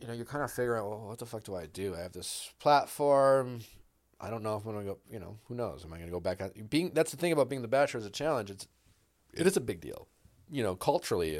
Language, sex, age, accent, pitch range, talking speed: English, male, 30-49, American, 90-110 Hz, 300 wpm